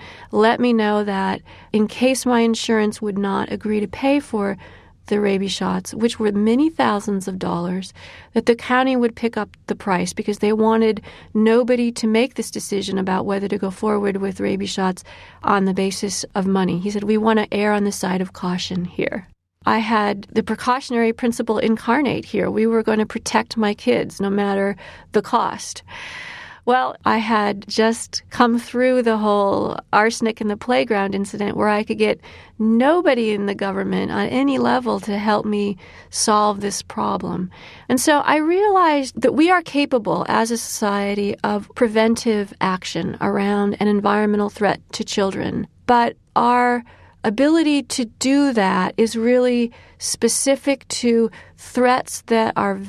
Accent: American